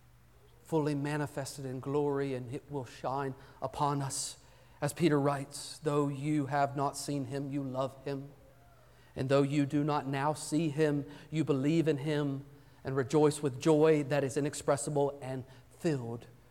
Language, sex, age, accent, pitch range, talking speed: English, male, 40-59, American, 140-230 Hz, 155 wpm